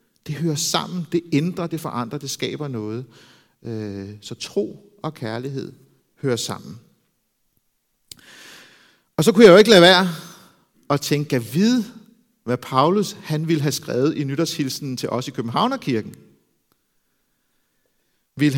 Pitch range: 130-180 Hz